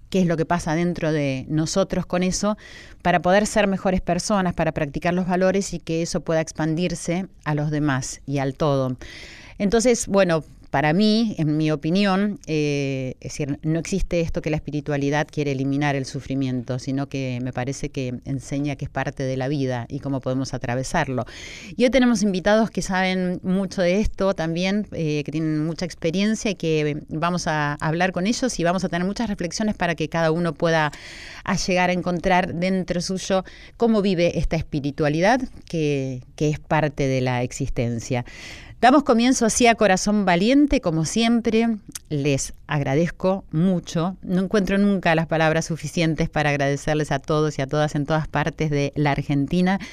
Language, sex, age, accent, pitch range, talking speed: Spanish, female, 30-49, Argentinian, 145-185 Hz, 175 wpm